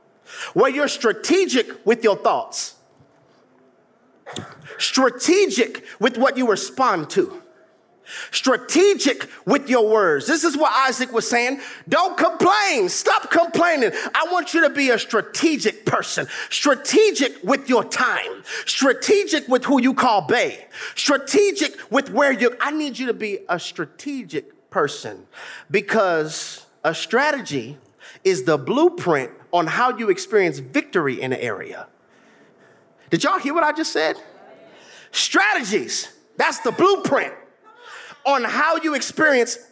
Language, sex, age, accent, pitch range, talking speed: English, male, 30-49, American, 240-345 Hz, 130 wpm